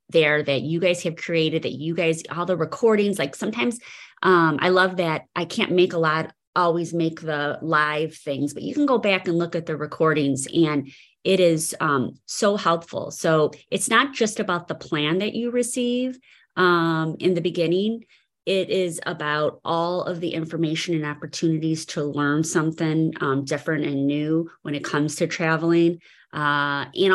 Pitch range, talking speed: 155-185 Hz, 180 wpm